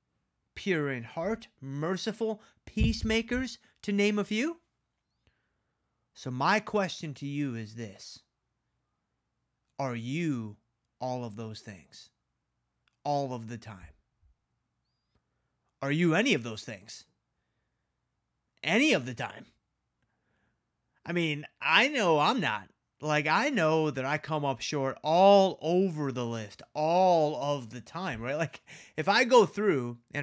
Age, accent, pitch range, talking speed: 30-49, American, 120-165 Hz, 130 wpm